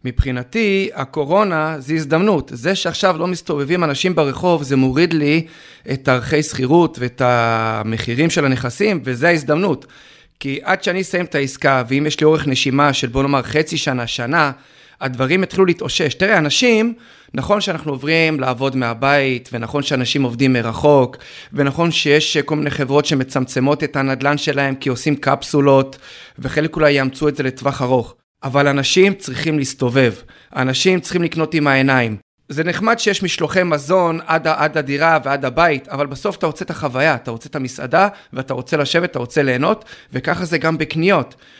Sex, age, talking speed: male, 30-49, 160 wpm